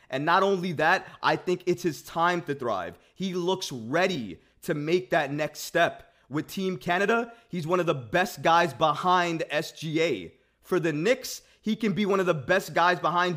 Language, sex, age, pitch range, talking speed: English, male, 30-49, 140-180 Hz, 190 wpm